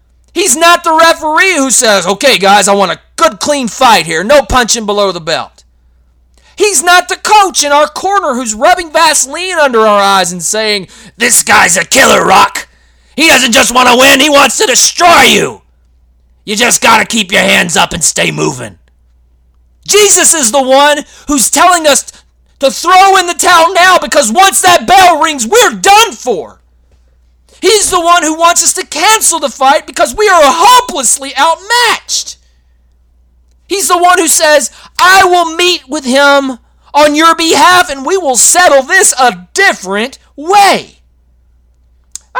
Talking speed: 170 wpm